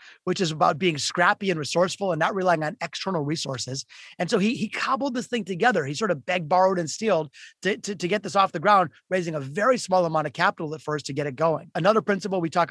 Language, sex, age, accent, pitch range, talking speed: English, male, 30-49, American, 160-205 Hz, 250 wpm